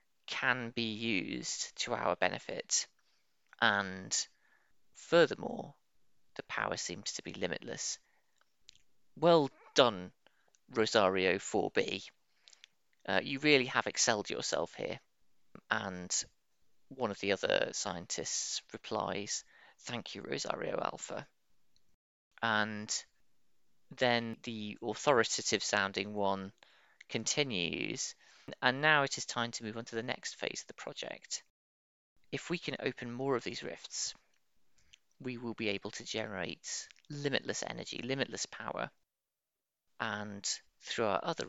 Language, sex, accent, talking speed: English, male, British, 115 wpm